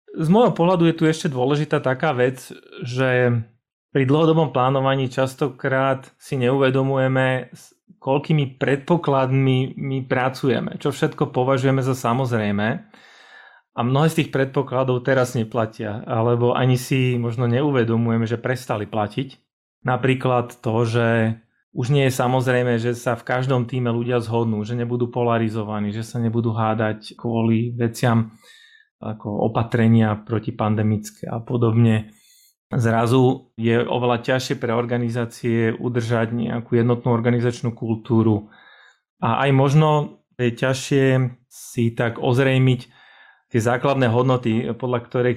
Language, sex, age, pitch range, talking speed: Slovak, male, 30-49, 115-130 Hz, 125 wpm